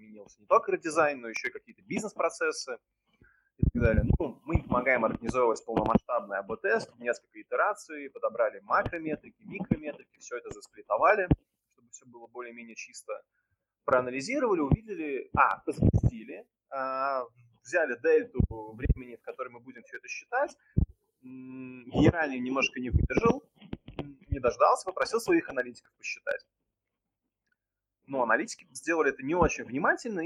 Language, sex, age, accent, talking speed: Russian, male, 20-39, native, 125 wpm